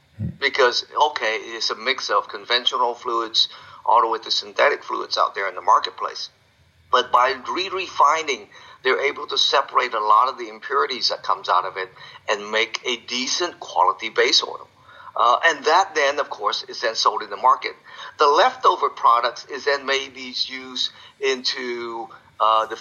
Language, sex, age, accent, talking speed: English, male, 50-69, American, 170 wpm